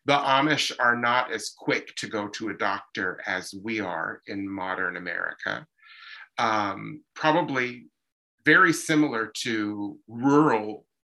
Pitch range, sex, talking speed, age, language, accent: 110-135 Hz, male, 125 wpm, 30-49, English, American